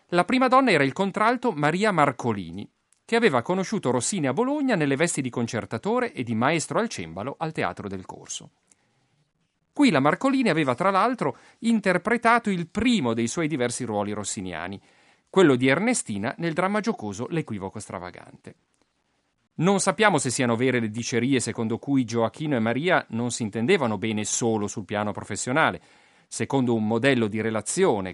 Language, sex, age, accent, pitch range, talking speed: Italian, male, 40-59, native, 110-185 Hz, 160 wpm